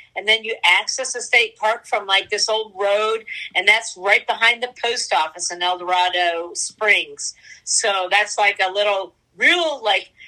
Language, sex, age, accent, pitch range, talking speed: English, female, 50-69, American, 190-245 Hz, 175 wpm